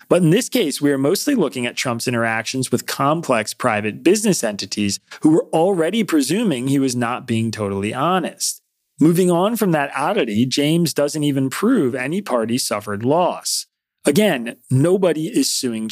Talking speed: 160 wpm